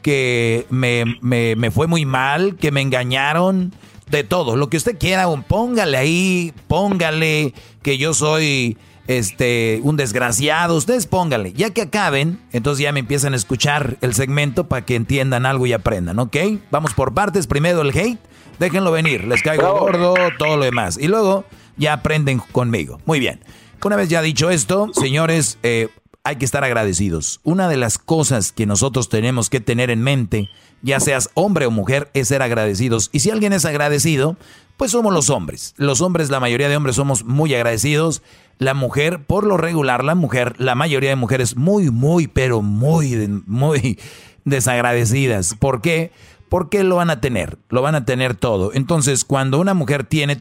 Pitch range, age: 125-160 Hz, 40-59